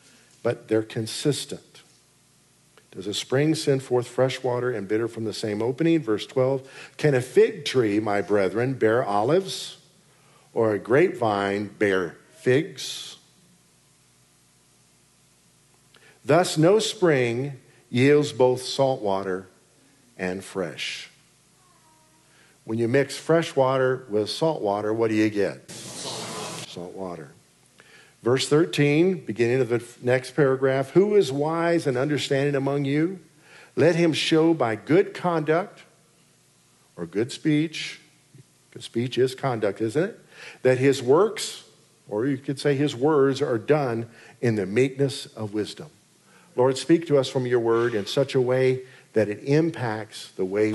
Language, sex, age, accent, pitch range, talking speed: English, male, 50-69, American, 110-150 Hz, 135 wpm